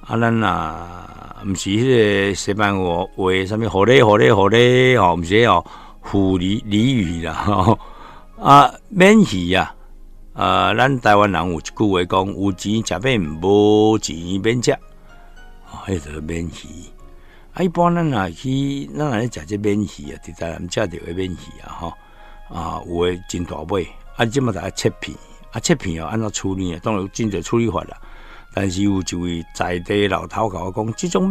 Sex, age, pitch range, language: male, 60-79, 85-110 Hz, Chinese